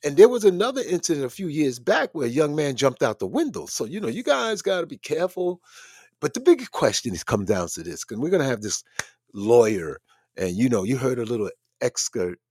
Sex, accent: male, American